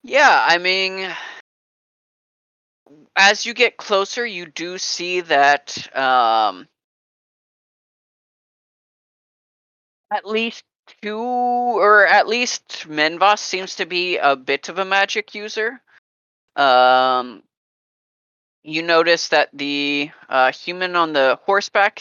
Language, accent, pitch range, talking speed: English, American, 135-195 Hz, 105 wpm